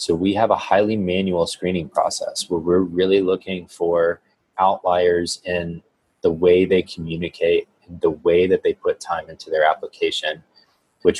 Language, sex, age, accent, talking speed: English, male, 20-39, American, 160 wpm